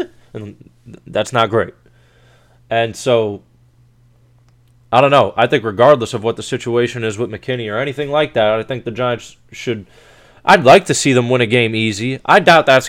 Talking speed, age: 185 wpm, 20-39